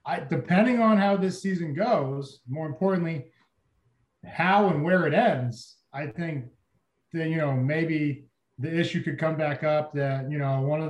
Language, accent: English, American